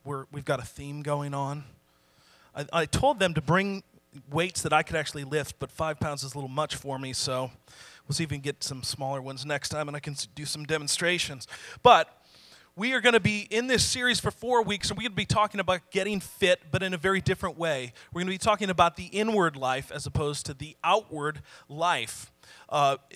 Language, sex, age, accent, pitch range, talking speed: English, male, 30-49, American, 145-185 Hz, 230 wpm